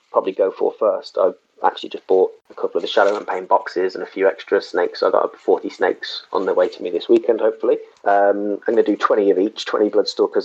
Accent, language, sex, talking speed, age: British, English, male, 245 wpm, 20-39